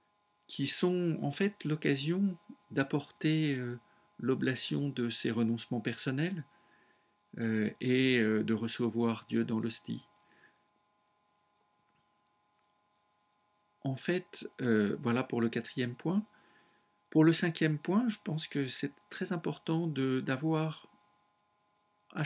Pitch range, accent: 120-180 Hz, French